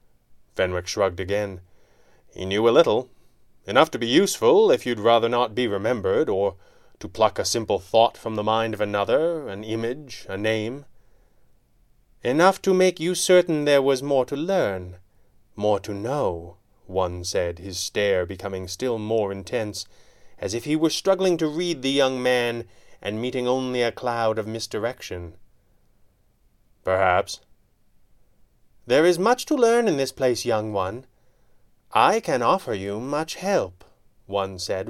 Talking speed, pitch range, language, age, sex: 155 wpm, 100-140 Hz, English, 30-49, male